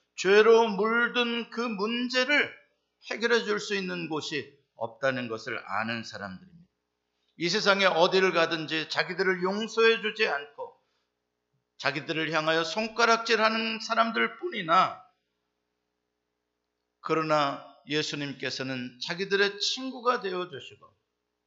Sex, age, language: male, 50-69, Korean